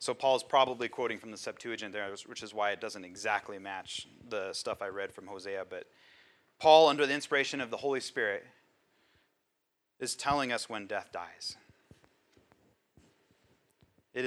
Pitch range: 110-135 Hz